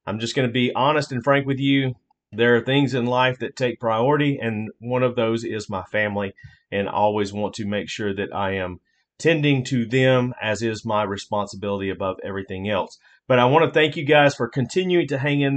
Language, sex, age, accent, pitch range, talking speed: English, male, 40-59, American, 115-140 Hz, 220 wpm